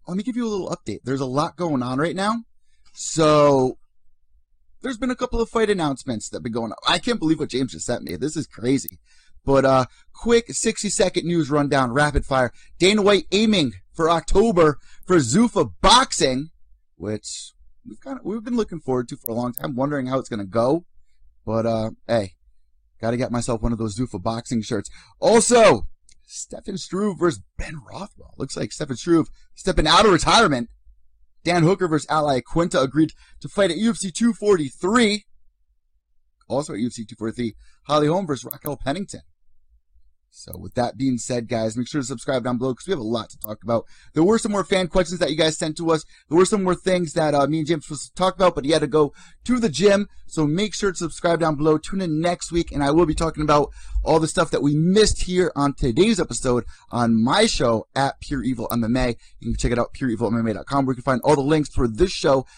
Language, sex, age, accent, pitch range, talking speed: English, male, 30-49, American, 115-175 Hz, 215 wpm